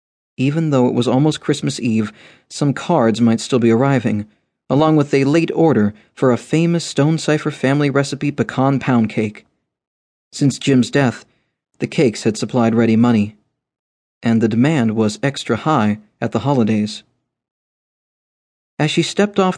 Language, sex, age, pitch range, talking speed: English, male, 40-59, 115-150 Hz, 155 wpm